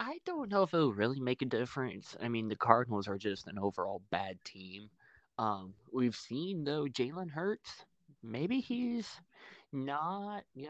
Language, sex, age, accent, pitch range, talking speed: English, male, 20-39, American, 100-130 Hz, 170 wpm